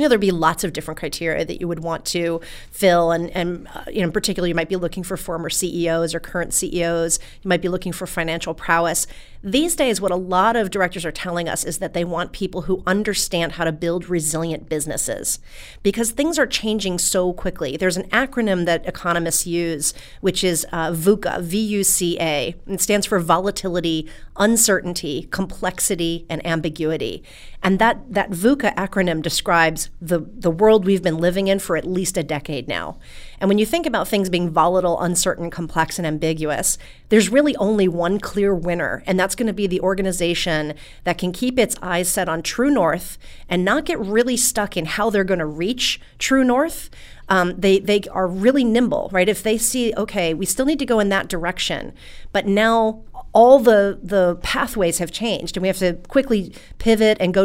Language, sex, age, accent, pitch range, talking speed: English, female, 40-59, American, 170-205 Hz, 195 wpm